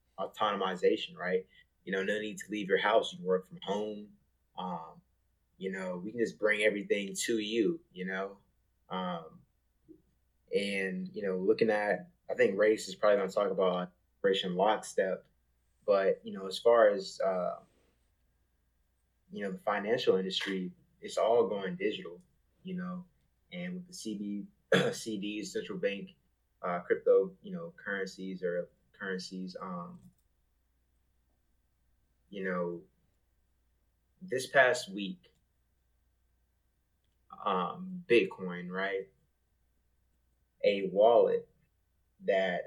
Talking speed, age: 120 wpm, 20-39